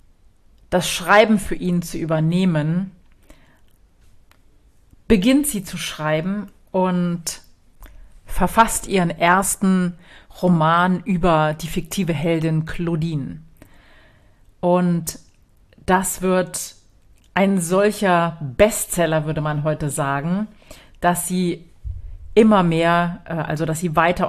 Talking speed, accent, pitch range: 95 wpm, German, 150-180 Hz